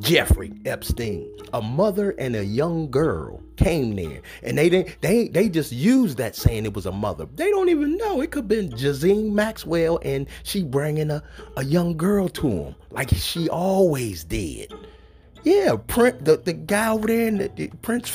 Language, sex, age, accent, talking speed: English, male, 30-49, American, 190 wpm